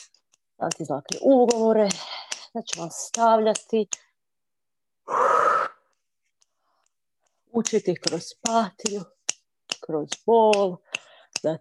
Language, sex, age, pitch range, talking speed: Croatian, female, 40-59, 160-220 Hz, 50 wpm